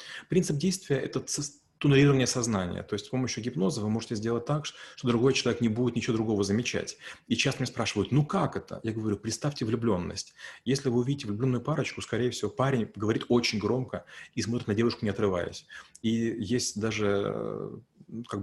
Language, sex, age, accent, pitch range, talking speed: Russian, male, 30-49, native, 105-130 Hz, 175 wpm